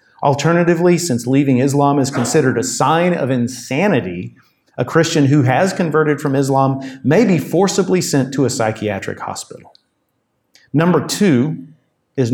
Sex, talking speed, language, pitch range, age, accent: male, 135 wpm, English, 120-150 Hz, 50-69, American